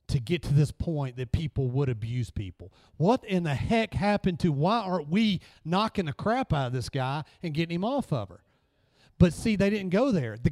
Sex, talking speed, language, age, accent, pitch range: male, 220 wpm, English, 40-59, American, 125-180 Hz